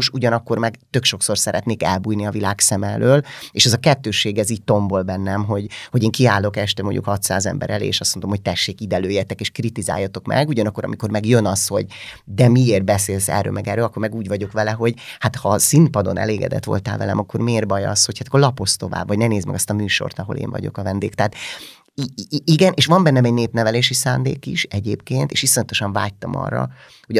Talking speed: 220 wpm